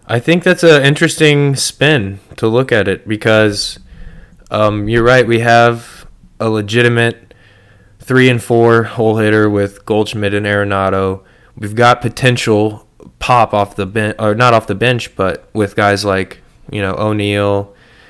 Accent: American